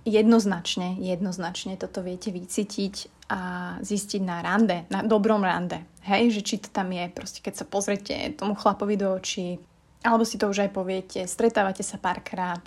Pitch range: 190-230 Hz